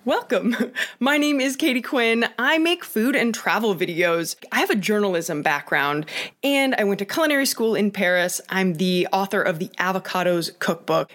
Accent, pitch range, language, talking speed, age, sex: American, 185-270 Hz, English, 170 wpm, 20-39, female